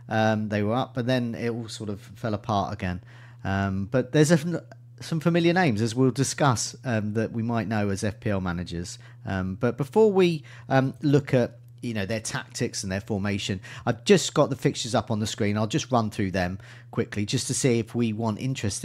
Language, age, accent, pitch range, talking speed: English, 40-59, British, 110-135 Hz, 215 wpm